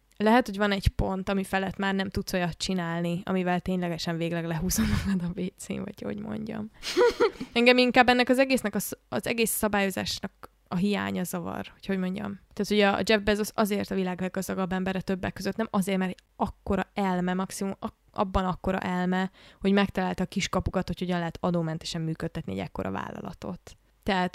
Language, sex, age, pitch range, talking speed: Hungarian, female, 20-39, 185-210 Hz, 180 wpm